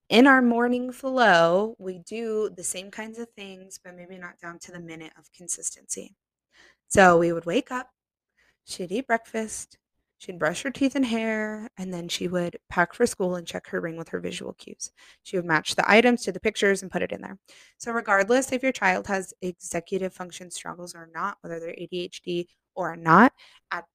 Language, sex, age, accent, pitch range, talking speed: English, female, 20-39, American, 180-225 Hz, 200 wpm